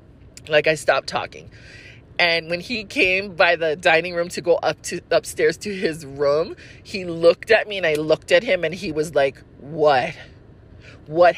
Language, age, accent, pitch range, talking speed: English, 30-49, American, 150-210 Hz, 185 wpm